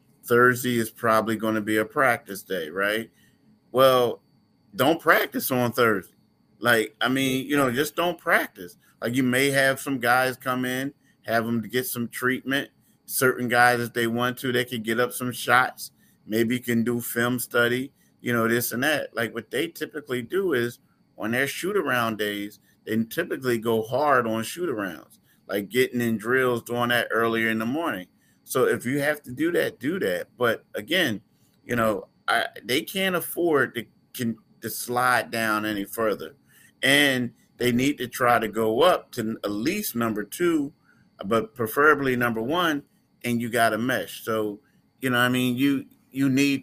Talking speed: 180 wpm